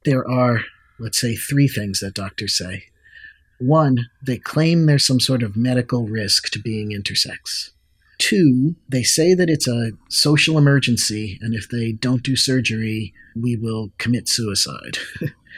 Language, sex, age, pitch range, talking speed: English, male, 50-69, 110-130 Hz, 150 wpm